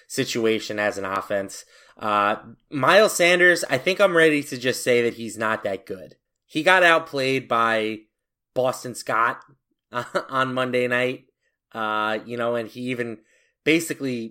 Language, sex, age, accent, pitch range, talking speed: English, male, 20-39, American, 115-145 Hz, 150 wpm